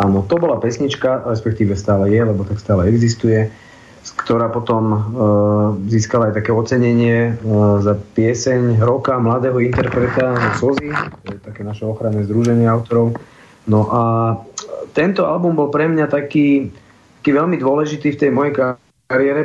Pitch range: 110-135 Hz